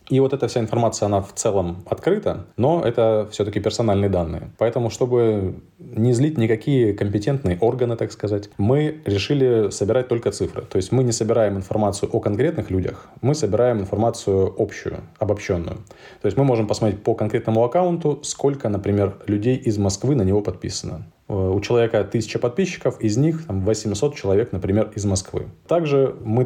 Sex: male